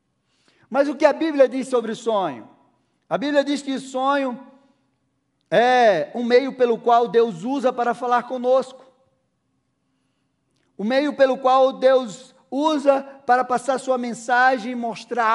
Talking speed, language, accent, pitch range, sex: 145 wpm, Portuguese, Brazilian, 220-260 Hz, male